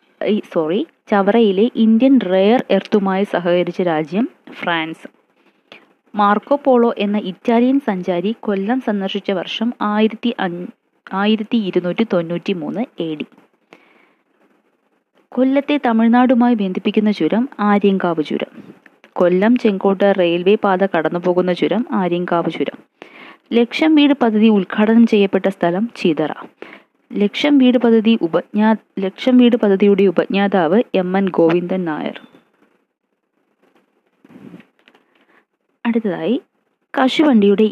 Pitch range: 185-235 Hz